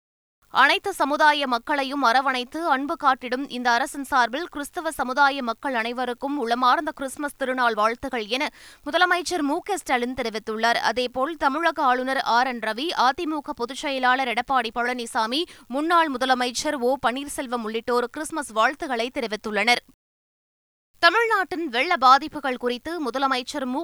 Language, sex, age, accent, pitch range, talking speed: Tamil, female, 20-39, native, 245-300 Hz, 110 wpm